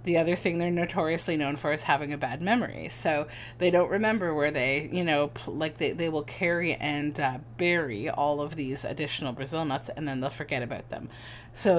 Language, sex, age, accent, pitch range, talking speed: English, female, 30-49, American, 130-170 Hz, 210 wpm